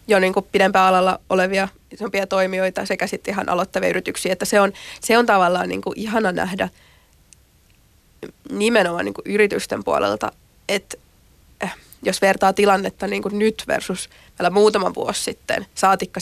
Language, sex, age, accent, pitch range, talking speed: Finnish, female, 20-39, native, 185-215 Hz, 120 wpm